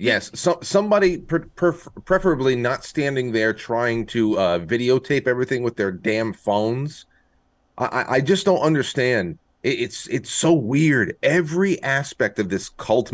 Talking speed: 145 wpm